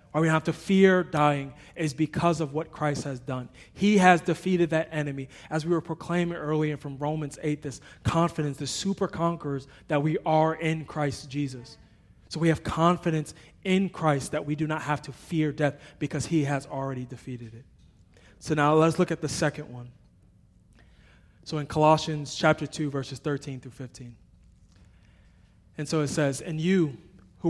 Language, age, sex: English, 20-39, male